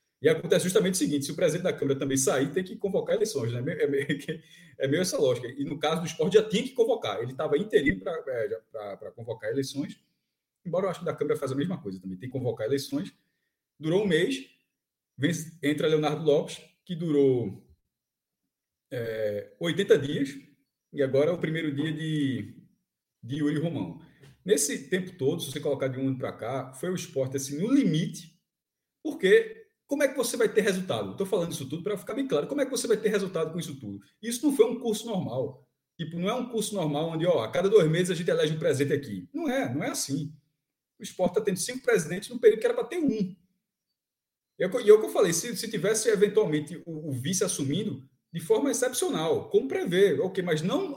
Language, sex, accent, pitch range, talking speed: Portuguese, male, Brazilian, 145-220 Hz, 215 wpm